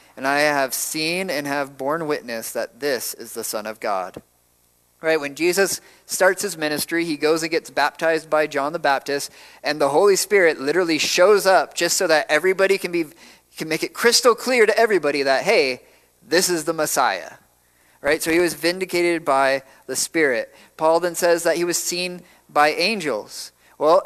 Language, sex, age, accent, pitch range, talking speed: English, male, 30-49, American, 130-165 Hz, 185 wpm